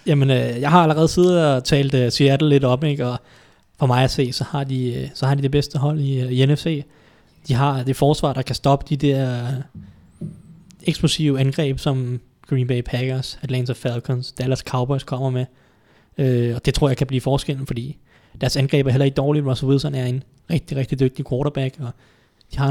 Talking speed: 195 wpm